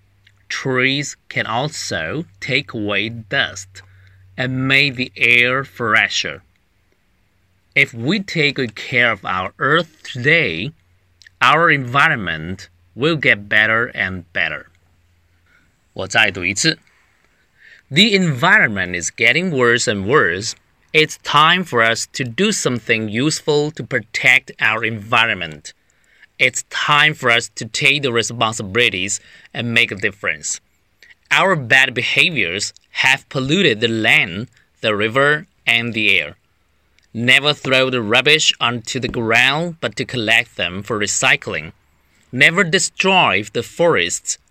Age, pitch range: 30-49, 105-140 Hz